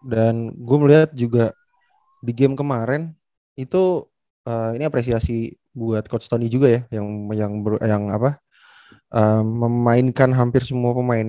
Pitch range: 115-130 Hz